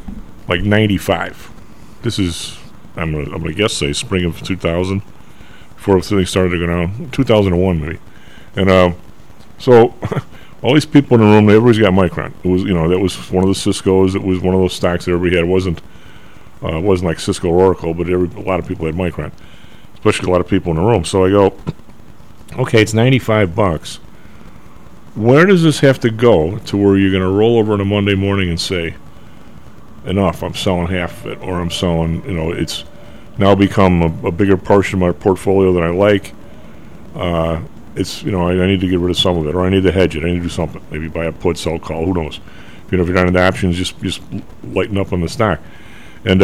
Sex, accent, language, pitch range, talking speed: male, American, English, 85-105 Hz, 235 wpm